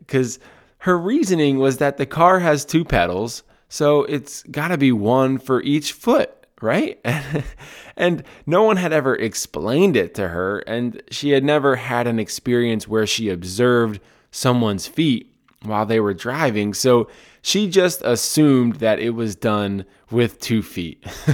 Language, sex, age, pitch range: English, male, 20-39, 115-160 Hz